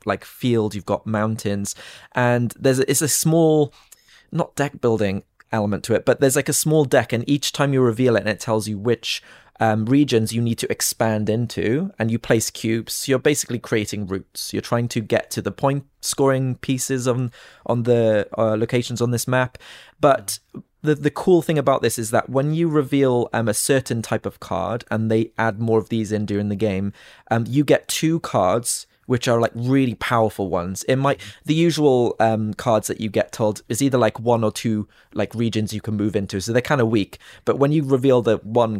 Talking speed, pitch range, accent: 210 wpm, 110-135 Hz, British